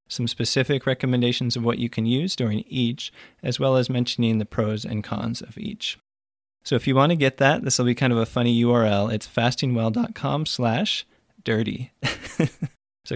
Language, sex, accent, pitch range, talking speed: English, male, American, 110-135 Hz, 180 wpm